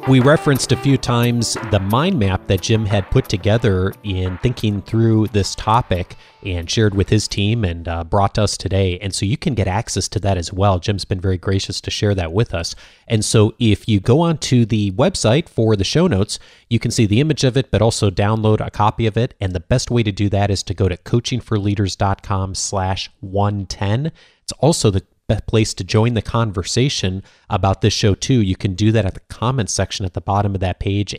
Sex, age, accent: male, 30-49, American